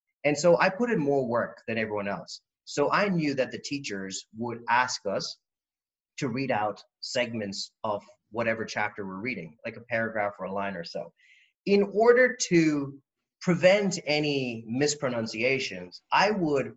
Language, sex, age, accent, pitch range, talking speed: English, male, 30-49, American, 115-170 Hz, 160 wpm